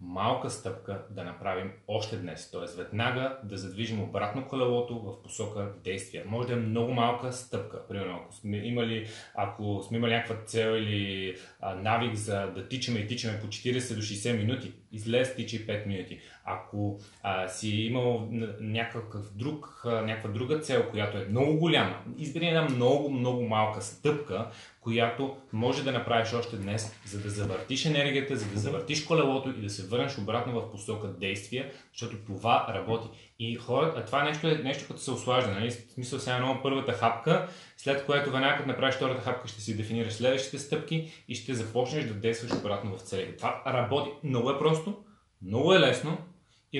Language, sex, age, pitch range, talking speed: Bulgarian, male, 30-49, 105-130 Hz, 175 wpm